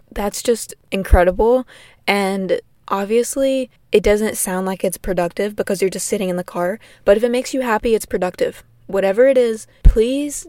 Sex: female